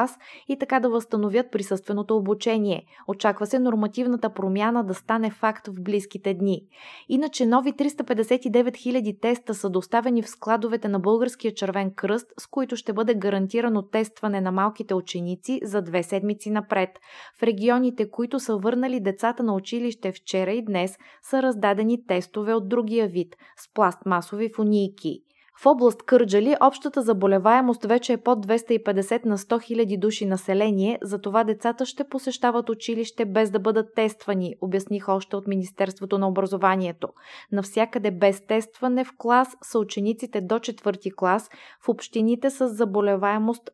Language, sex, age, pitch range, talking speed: Bulgarian, female, 20-39, 195-240 Hz, 145 wpm